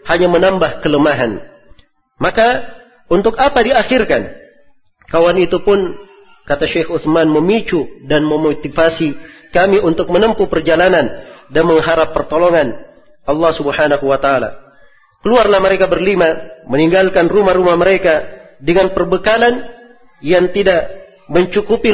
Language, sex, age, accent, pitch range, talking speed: Indonesian, male, 40-59, native, 155-200 Hz, 105 wpm